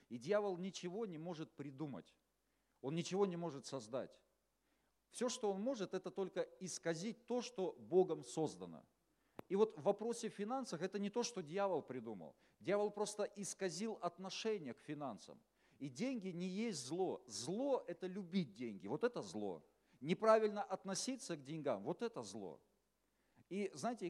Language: Russian